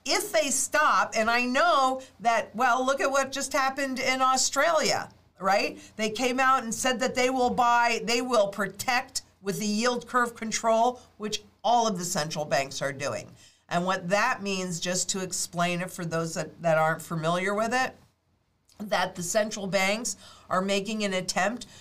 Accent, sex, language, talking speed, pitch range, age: American, female, English, 180 wpm, 175-225 Hz, 50-69